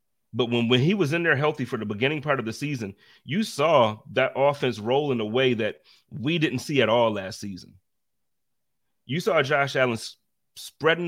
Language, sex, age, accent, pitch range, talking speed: English, male, 30-49, American, 110-135 Hz, 195 wpm